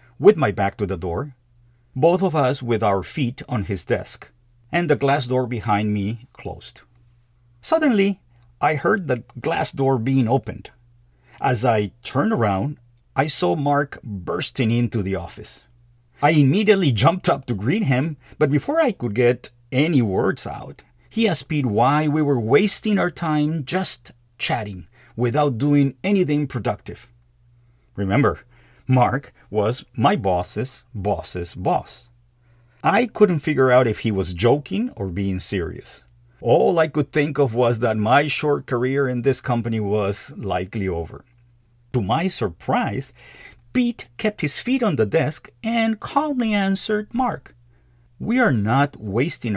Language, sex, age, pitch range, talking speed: English, male, 50-69, 110-150 Hz, 150 wpm